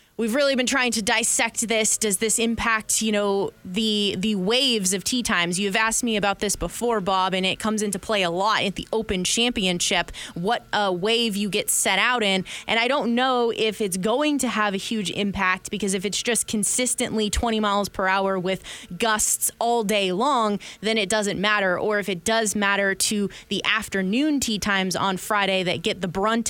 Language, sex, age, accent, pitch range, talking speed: English, female, 20-39, American, 195-230 Hz, 205 wpm